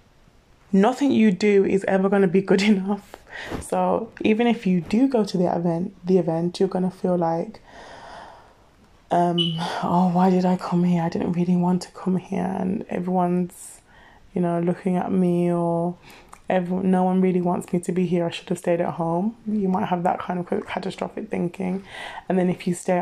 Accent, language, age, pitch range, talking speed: British, English, 20-39, 175-200 Hz, 200 wpm